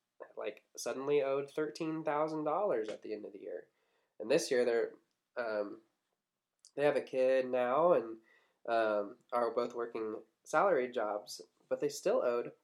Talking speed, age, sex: 155 wpm, 20-39, male